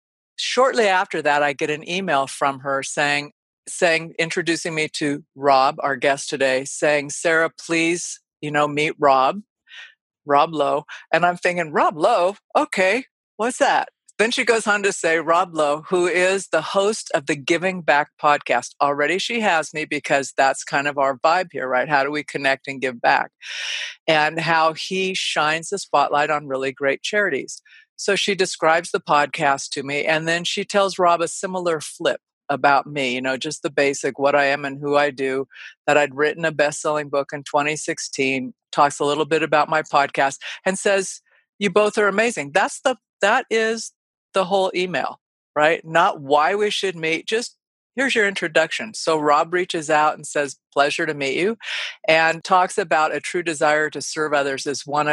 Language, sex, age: English, female, 50-69